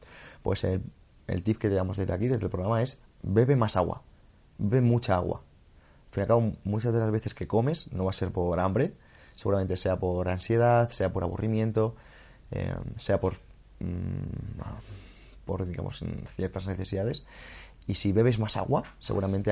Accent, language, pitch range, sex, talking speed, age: Spanish, Spanish, 95-115 Hz, male, 175 wpm, 20-39